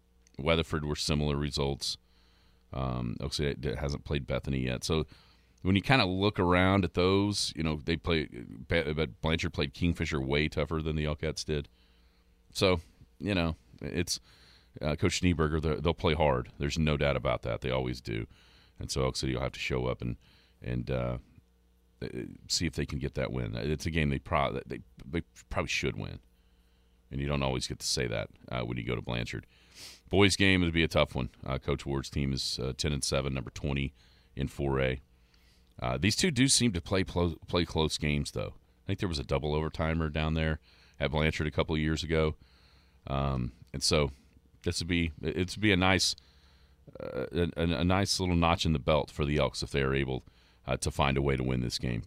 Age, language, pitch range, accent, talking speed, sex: 40-59, English, 65-80 Hz, American, 205 wpm, male